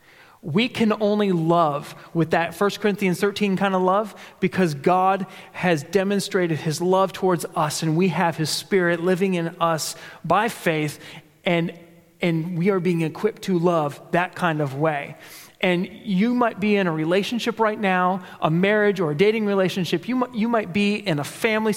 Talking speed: 180 wpm